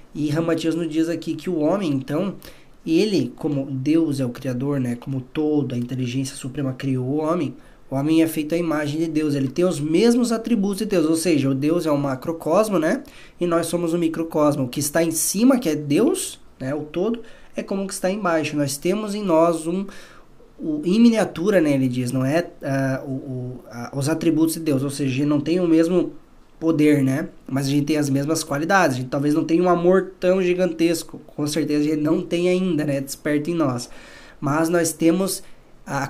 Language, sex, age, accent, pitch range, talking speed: Portuguese, male, 20-39, Brazilian, 140-170 Hz, 205 wpm